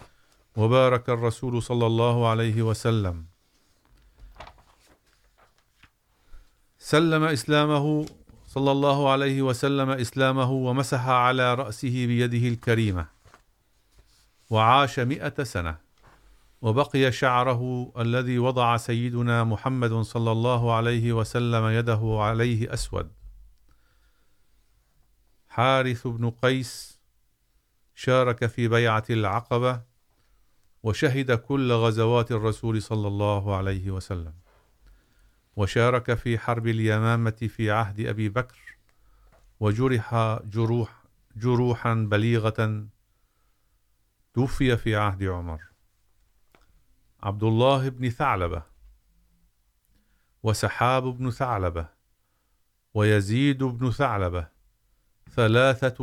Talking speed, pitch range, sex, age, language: 80 wpm, 105-125 Hz, male, 50-69, Urdu